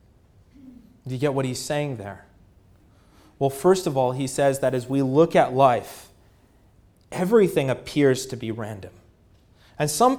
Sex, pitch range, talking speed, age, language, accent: male, 110-150 Hz, 155 wpm, 30-49, English, American